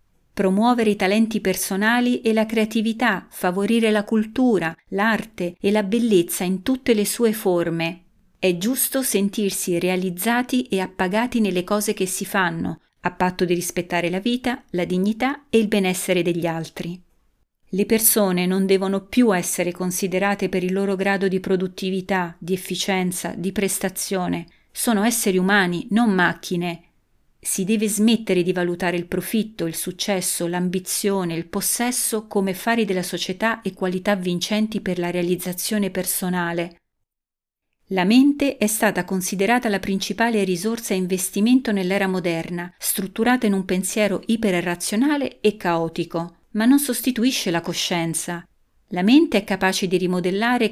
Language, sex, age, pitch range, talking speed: Italian, female, 40-59, 180-220 Hz, 140 wpm